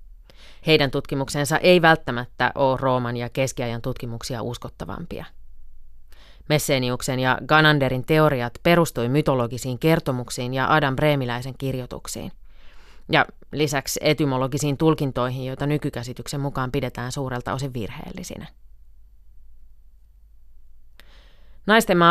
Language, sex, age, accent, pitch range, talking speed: Finnish, female, 30-49, native, 125-160 Hz, 90 wpm